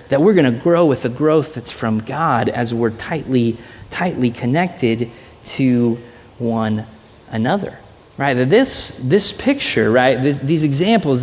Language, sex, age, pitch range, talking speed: English, male, 30-49, 120-145 Hz, 145 wpm